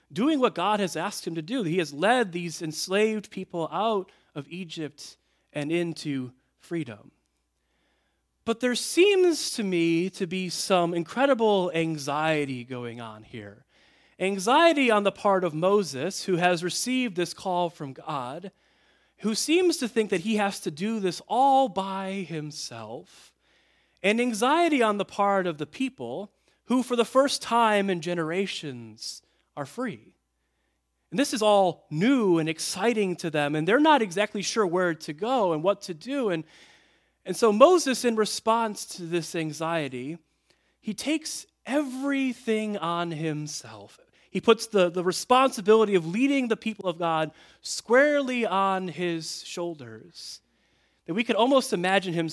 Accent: American